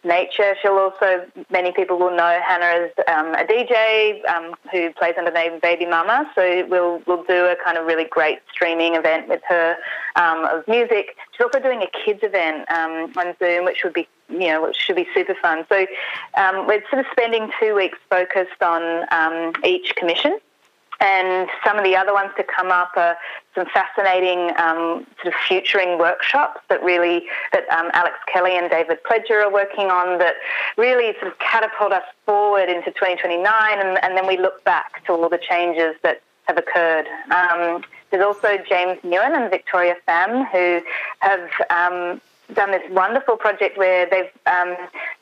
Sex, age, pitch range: female, 30-49, 175-205 Hz